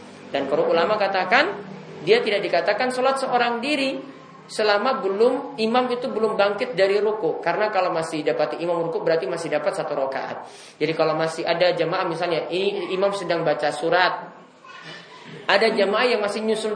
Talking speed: 160 wpm